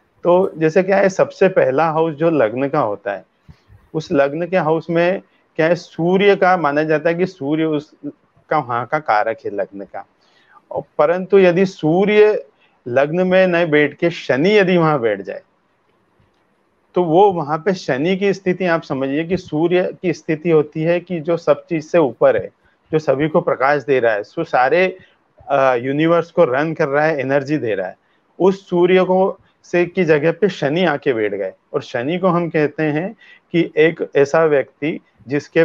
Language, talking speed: Hindi, 185 wpm